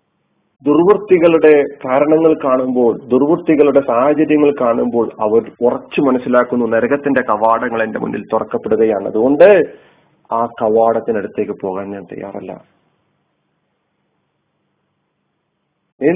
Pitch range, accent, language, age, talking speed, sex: 125-180 Hz, native, Malayalam, 30-49, 75 wpm, male